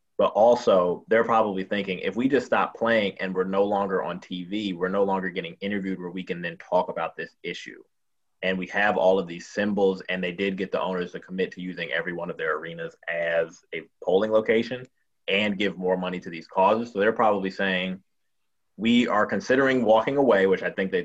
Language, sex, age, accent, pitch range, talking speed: English, male, 30-49, American, 95-110 Hz, 215 wpm